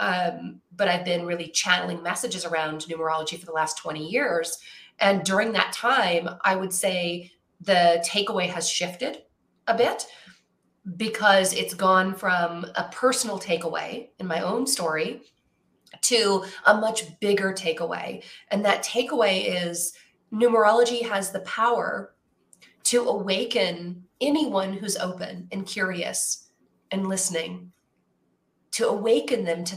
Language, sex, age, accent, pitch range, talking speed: English, female, 30-49, American, 175-215 Hz, 130 wpm